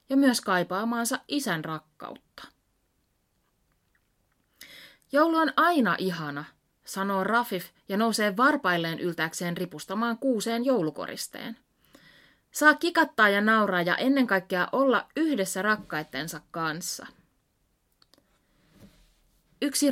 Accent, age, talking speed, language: native, 30-49, 90 wpm, Finnish